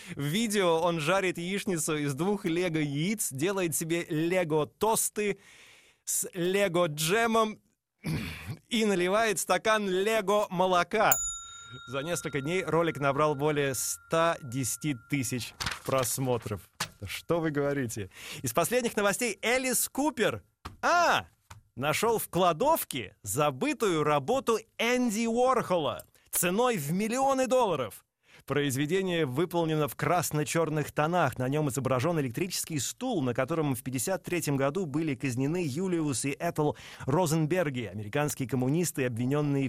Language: Russian